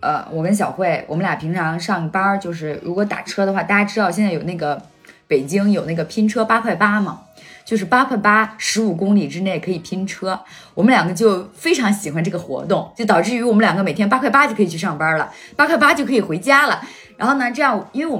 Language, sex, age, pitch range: Chinese, female, 20-39, 175-240 Hz